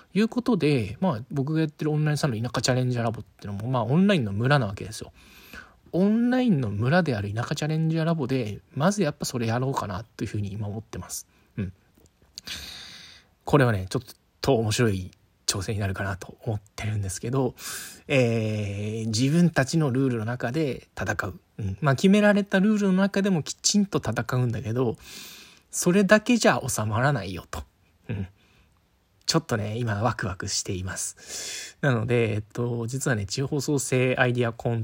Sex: male